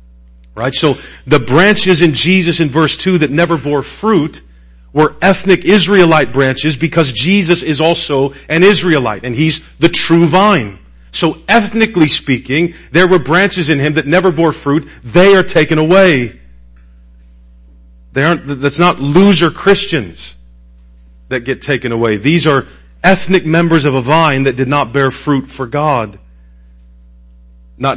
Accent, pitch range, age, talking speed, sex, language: American, 100-165 Hz, 40-59, 150 wpm, male, English